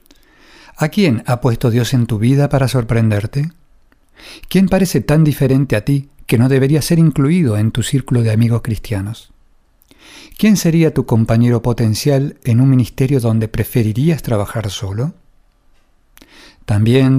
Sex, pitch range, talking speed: male, 115-150 Hz, 140 wpm